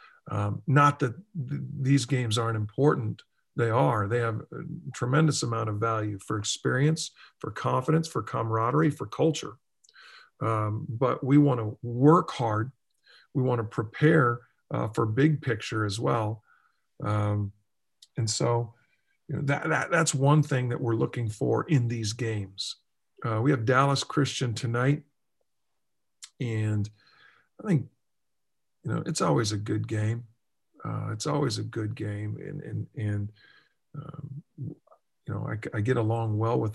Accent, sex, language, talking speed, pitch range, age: American, male, English, 150 wpm, 110-145 Hz, 50-69